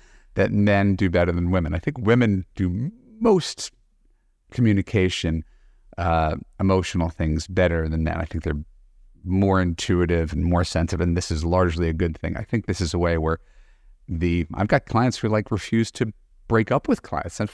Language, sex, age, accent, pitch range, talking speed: English, male, 40-59, American, 85-135 Hz, 180 wpm